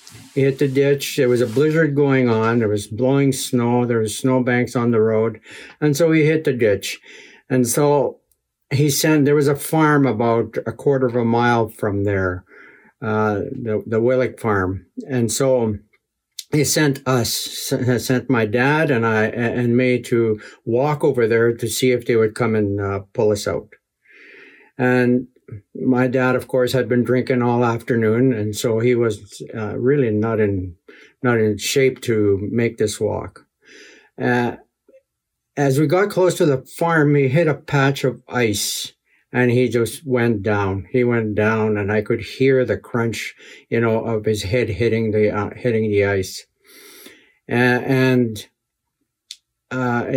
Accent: American